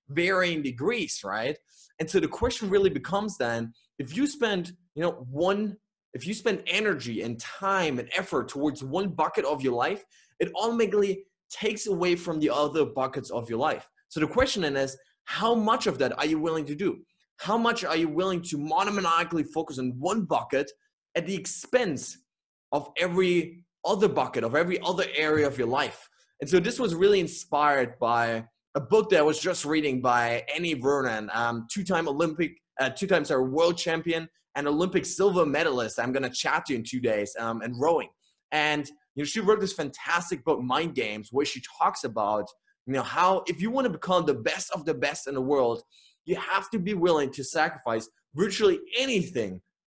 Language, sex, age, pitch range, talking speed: English, male, 20-39, 140-195 Hz, 190 wpm